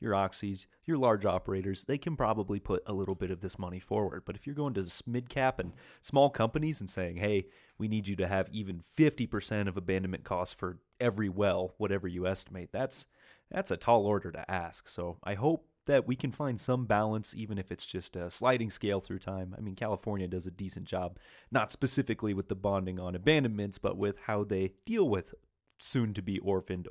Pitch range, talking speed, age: 95-125 Hz, 205 wpm, 30-49